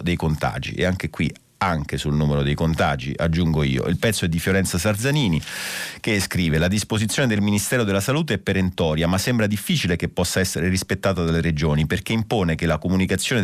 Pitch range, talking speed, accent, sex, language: 85-105 Hz, 190 wpm, native, male, Italian